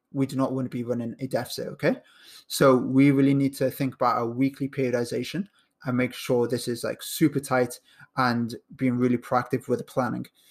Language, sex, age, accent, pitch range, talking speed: English, male, 20-39, British, 125-140 Hz, 200 wpm